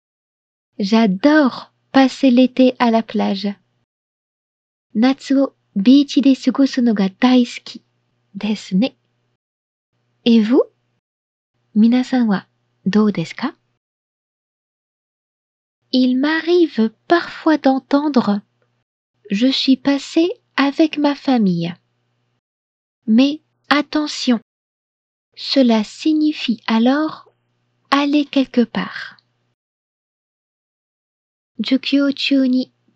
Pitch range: 205-275 Hz